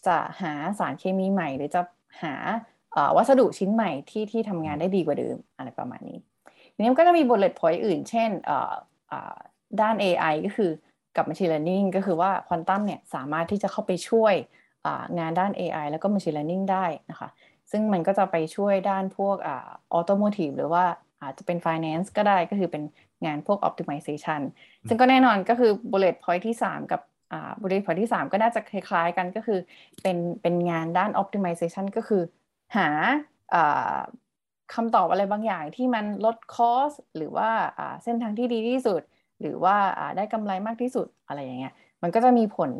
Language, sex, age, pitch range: Thai, female, 20-39, 170-220 Hz